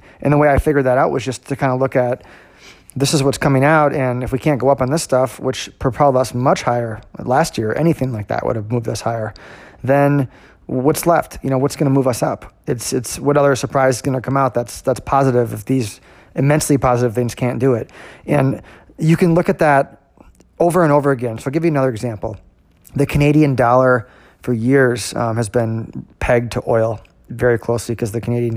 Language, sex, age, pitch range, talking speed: English, male, 30-49, 115-135 Hz, 225 wpm